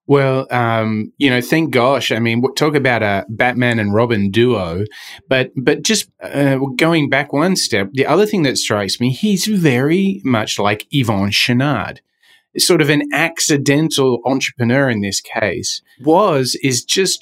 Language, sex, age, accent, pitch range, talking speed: English, male, 30-49, Australian, 115-145 Hz, 160 wpm